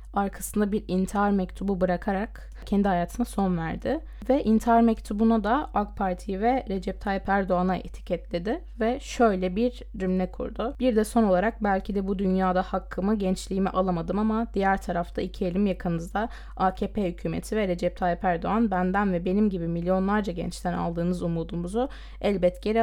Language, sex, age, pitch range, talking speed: Turkish, female, 20-39, 180-210 Hz, 150 wpm